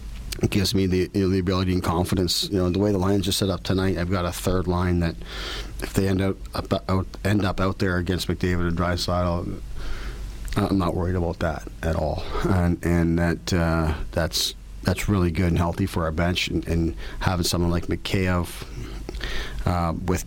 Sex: male